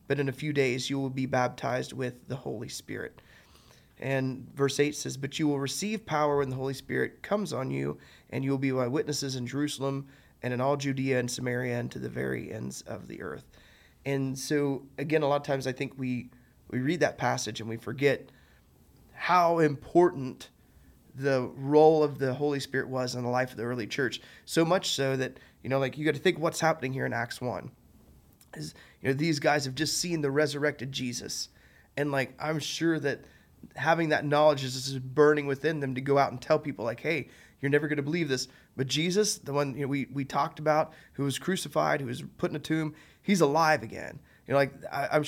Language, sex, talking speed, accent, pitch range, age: English, male, 220 wpm, American, 130-155 Hz, 20-39